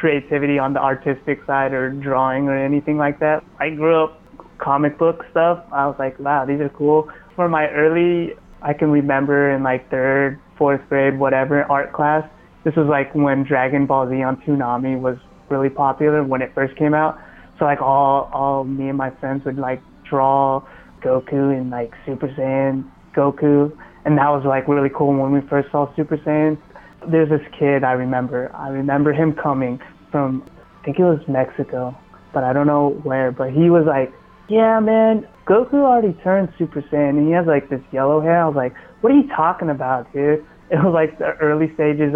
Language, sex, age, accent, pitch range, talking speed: English, male, 20-39, American, 135-155 Hz, 195 wpm